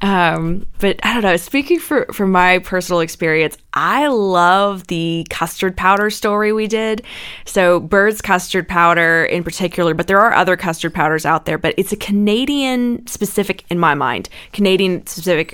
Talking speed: 160 wpm